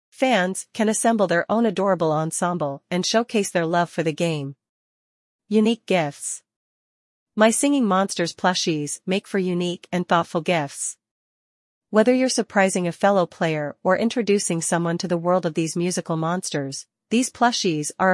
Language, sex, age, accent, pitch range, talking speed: English, female, 40-59, American, 165-205 Hz, 150 wpm